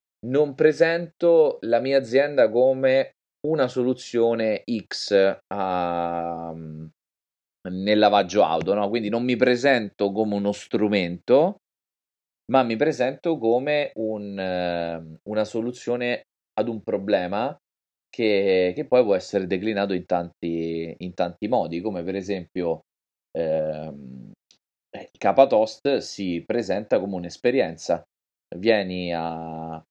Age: 30-49